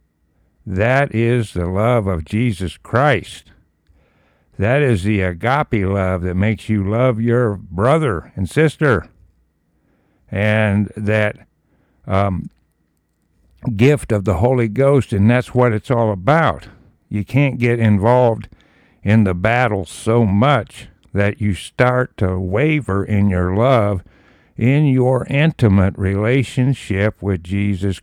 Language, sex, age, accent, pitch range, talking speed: English, male, 60-79, American, 90-120 Hz, 120 wpm